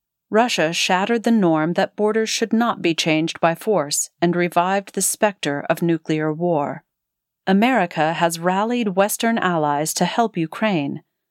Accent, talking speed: American, 145 wpm